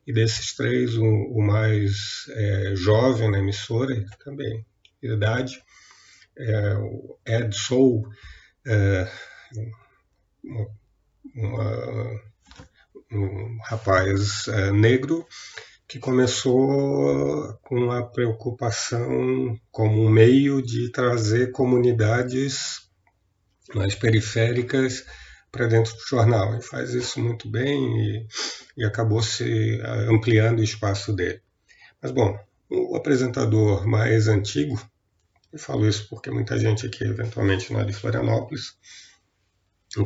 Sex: male